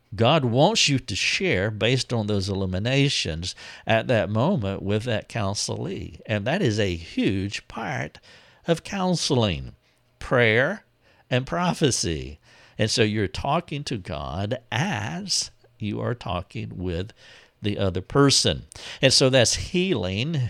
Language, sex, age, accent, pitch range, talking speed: English, male, 60-79, American, 90-120 Hz, 130 wpm